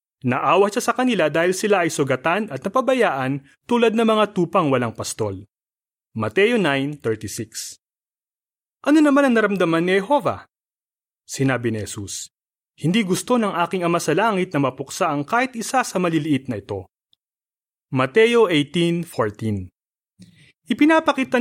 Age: 30-49